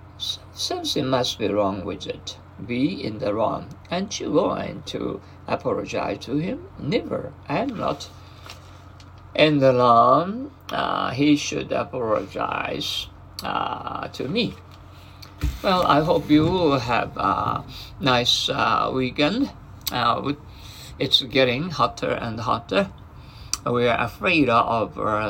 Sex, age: male, 60-79